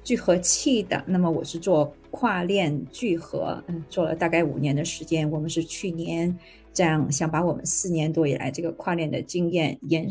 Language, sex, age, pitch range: Chinese, female, 20-39, 155-175 Hz